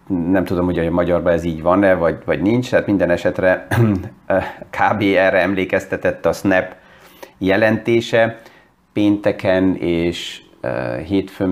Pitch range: 90-105 Hz